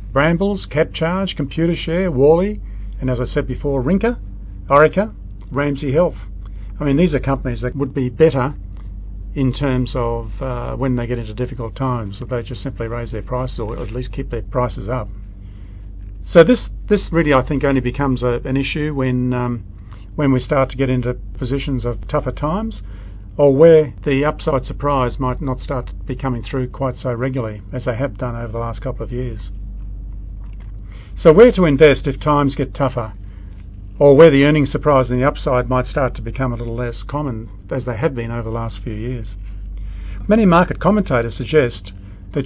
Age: 50-69